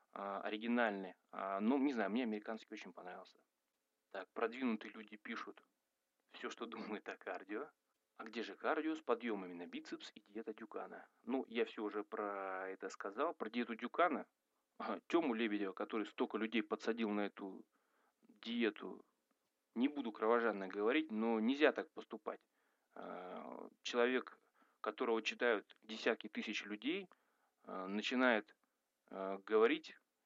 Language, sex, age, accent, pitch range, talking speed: Russian, male, 30-49, native, 105-120 Hz, 125 wpm